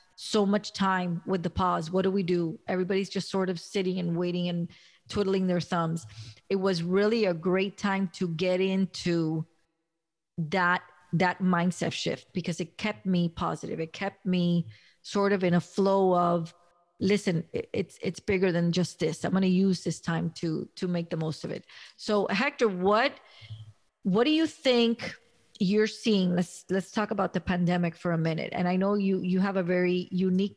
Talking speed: 185 wpm